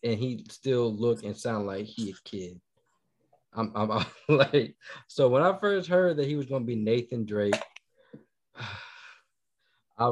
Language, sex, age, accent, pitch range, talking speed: English, male, 20-39, American, 115-180 Hz, 165 wpm